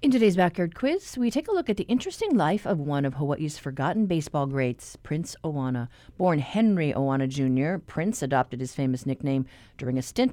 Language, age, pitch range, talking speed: English, 50-69, 140-200 Hz, 190 wpm